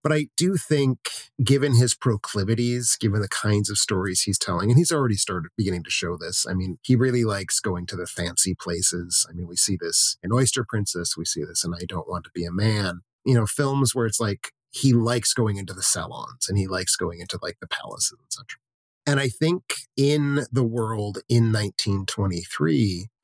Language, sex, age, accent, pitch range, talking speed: English, male, 30-49, American, 95-125 Hz, 205 wpm